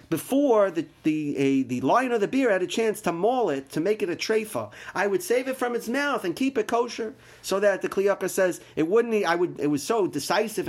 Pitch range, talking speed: 135-215 Hz, 245 wpm